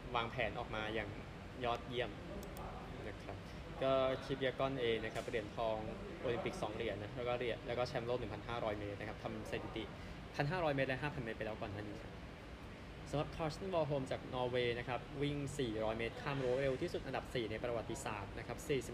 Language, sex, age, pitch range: Thai, male, 20-39, 110-135 Hz